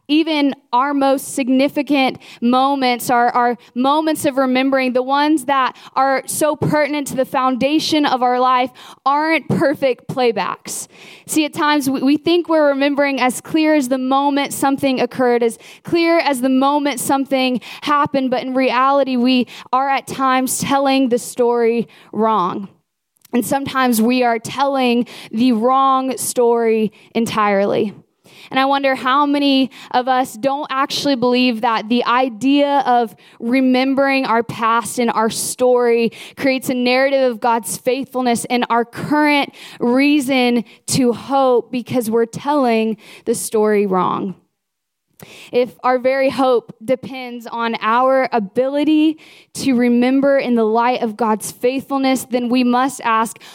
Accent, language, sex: American, English, female